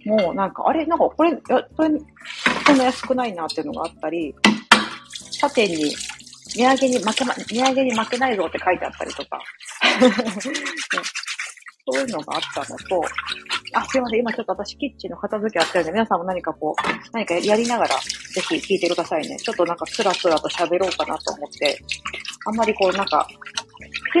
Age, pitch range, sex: 40-59, 175-270 Hz, female